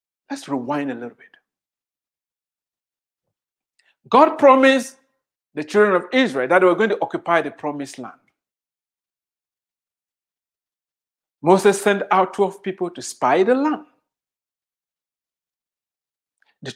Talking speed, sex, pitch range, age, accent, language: 105 wpm, male, 205-290 Hz, 50-69, Nigerian, English